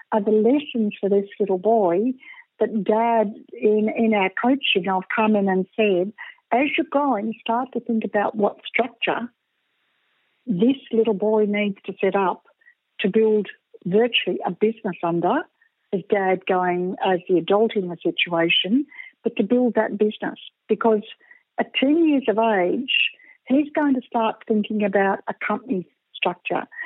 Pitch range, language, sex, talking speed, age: 195-255 Hz, English, female, 155 wpm, 60-79